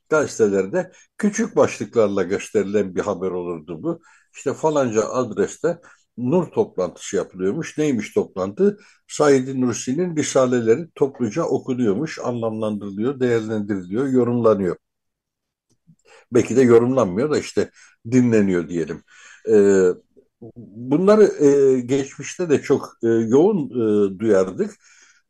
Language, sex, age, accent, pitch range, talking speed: Turkish, male, 60-79, native, 105-150 Hz, 90 wpm